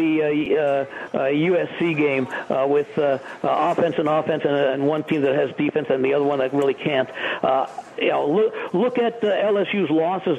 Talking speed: 200 wpm